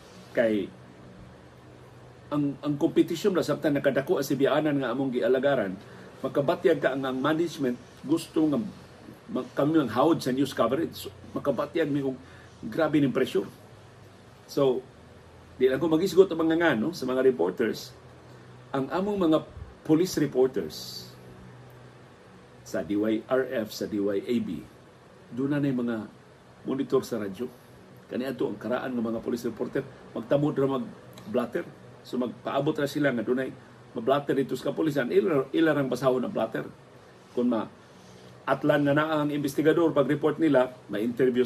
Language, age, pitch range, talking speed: Filipino, 50-69, 100-150 Hz, 135 wpm